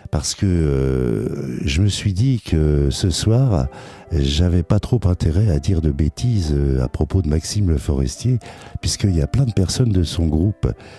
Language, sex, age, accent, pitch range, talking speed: French, male, 60-79, French, 75-100 Hz, 180 wpm